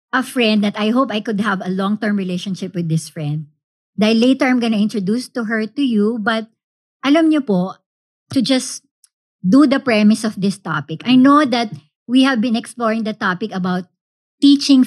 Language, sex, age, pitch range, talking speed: English, male, 50-69, 195-265 Hz, 185 wpm